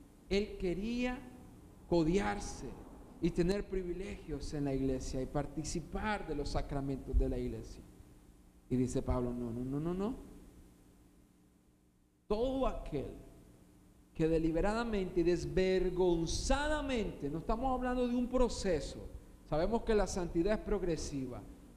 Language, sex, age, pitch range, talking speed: Spanish, male, 40-59, 130-195 Hz, 120 wpm